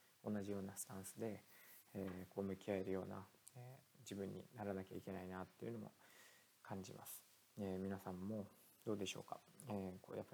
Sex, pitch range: male, 95-105 Hz